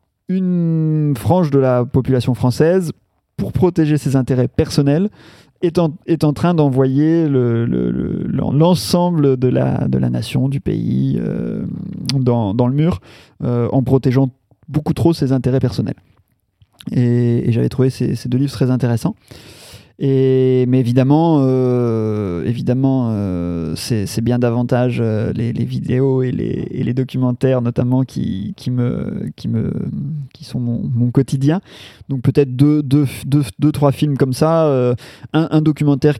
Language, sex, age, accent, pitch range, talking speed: French, male, 30-49, French, 120-150 Hz, 150 wpm